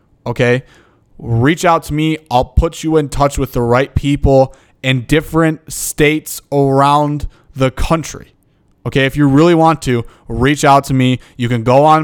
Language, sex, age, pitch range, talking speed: English, male, 20-39, 120-145 Hz, 170 wpm